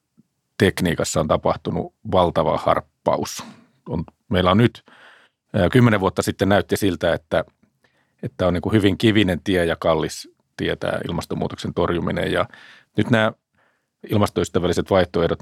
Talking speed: 120 wpm